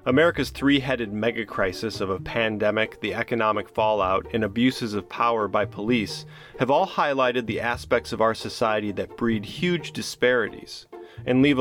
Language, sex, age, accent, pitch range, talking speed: English, male, 30-49, American, 105-130 Hz, 150 wpm